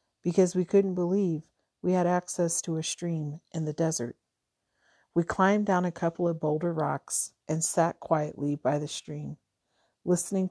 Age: 50-69